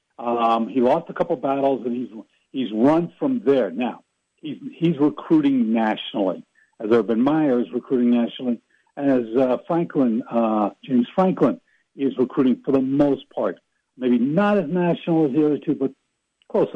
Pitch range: 120-160 Hz